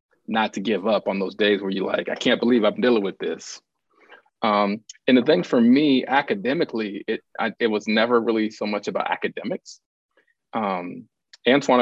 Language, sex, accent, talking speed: English, male, American, 185 wpm